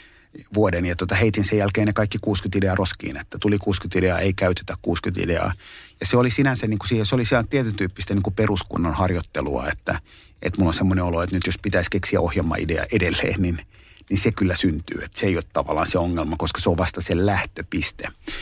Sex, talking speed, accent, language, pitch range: male, 210 wpm, native, Finnish, 90-105 Hz